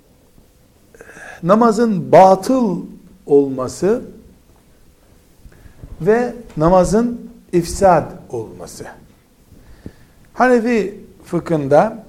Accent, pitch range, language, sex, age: native, 140-205 Hz, Turkish, male, 60-79